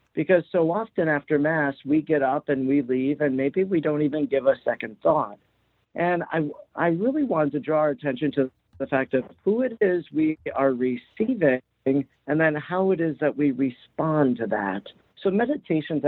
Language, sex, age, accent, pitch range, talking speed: English, male, 50-69, American, 135-175 Hz, 190 wpm